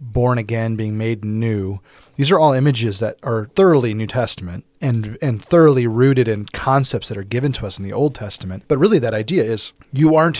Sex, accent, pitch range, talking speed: male, American, 105-135 Hz, 210 wpm